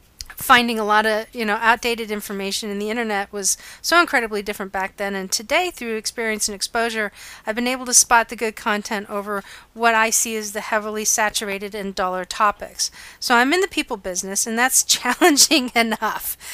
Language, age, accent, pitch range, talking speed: English, 40-59, American, 210-255 Hz, 190 wpm